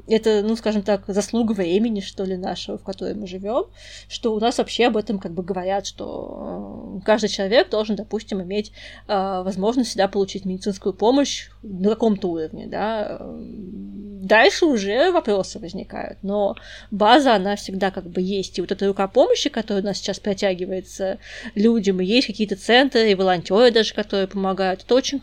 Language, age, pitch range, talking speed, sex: Russian, 20-39, 195-235 Hz, 165 wpm, female